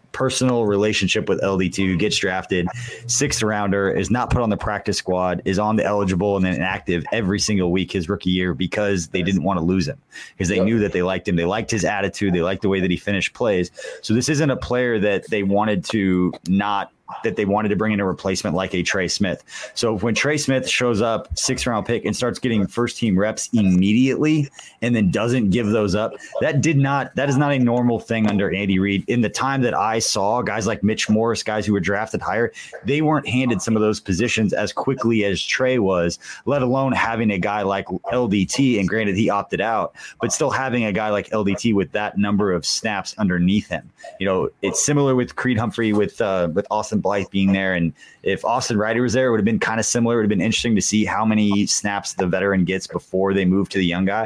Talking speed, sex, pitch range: 235 wpm, male, 95-115 Hz